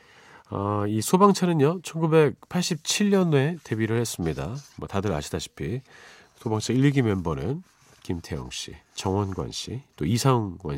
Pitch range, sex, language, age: 90-130 Hz, male, Korean, 40-59